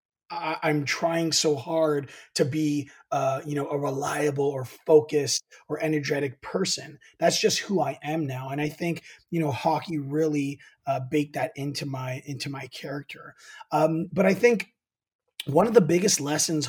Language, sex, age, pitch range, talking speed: English, male, 30-49, 145-175 Hz, 165 wpm